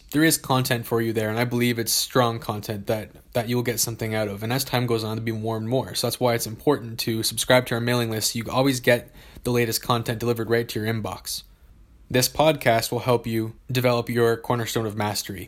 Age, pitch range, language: 20-39, 110-125 Hz, English